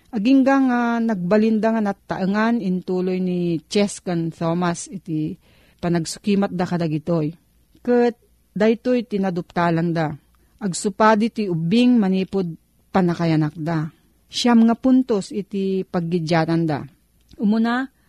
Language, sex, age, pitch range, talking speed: Filipino, female, 40-59, 175-230 Hz, 105 wpm